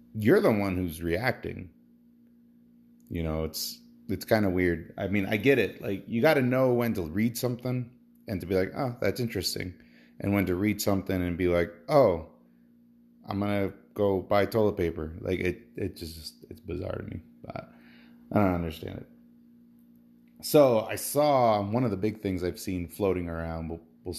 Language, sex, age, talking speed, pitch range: English, male, 30-49, 190 wpm, 80-115 Hz